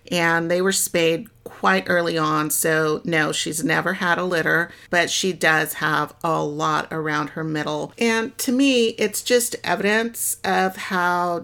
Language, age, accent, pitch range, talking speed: English, 50-69, American, 165-190 Hz, 165 wpm